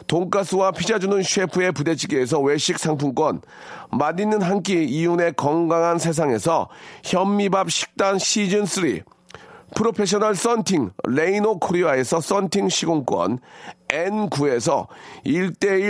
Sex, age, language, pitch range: male, 40-59, Korean, 165-210 Hz